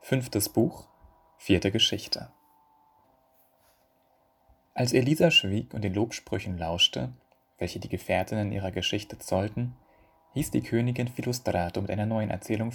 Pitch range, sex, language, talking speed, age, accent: 95-120 Hz, male, German, 120 wpm, 30-49, German